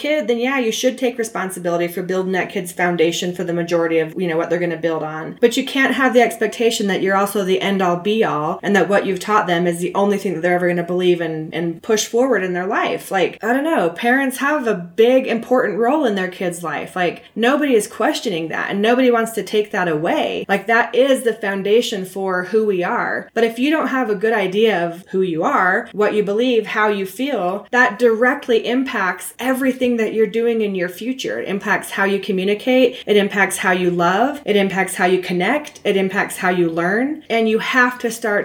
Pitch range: 185-240 Hz